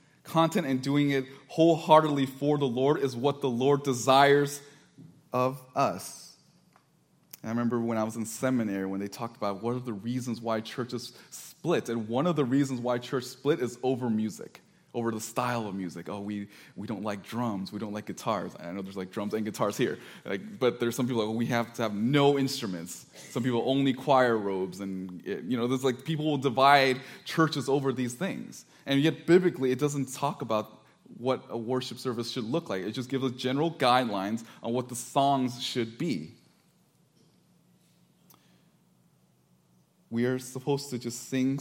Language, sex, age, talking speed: English, male, 20-39, 185 wpm